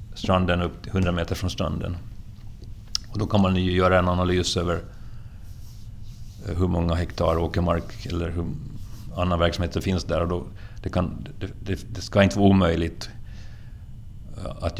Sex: male